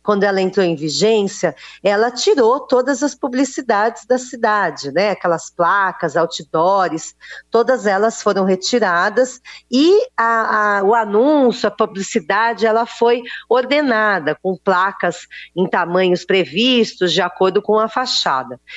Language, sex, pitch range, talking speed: Portuguese, female, 190-250 Hz, 130 wpm